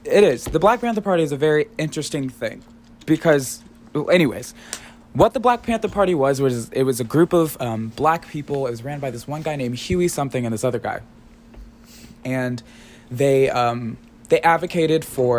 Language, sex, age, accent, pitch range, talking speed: English, male, 20-39, American, 125-155 Hz, 185 wpm